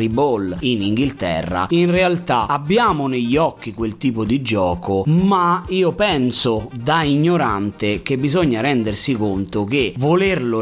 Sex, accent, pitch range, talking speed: male, native, 100-135 Hz, 130 wpm